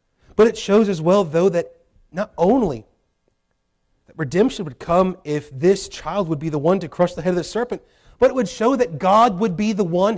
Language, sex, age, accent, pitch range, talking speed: English, male, 30-49, American, 185-245 Hz, 220 wpm